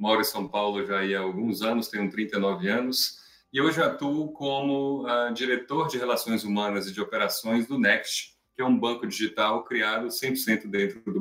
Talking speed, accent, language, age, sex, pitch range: 180 wpm, Brazilian, English, 30-49, male, 105-135 Hz